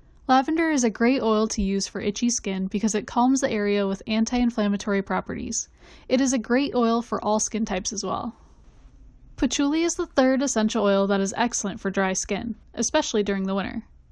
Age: 10-29